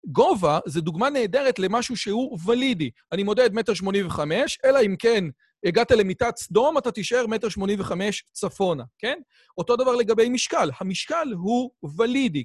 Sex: male